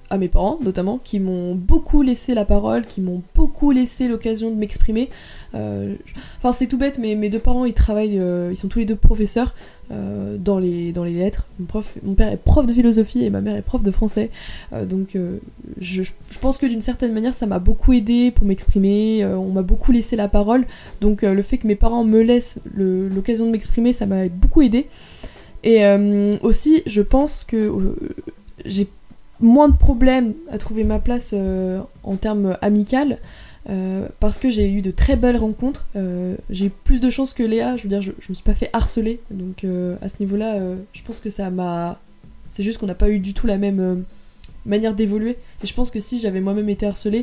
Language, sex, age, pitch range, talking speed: French, female, 20-39, 190-235 Hz, 225 wpm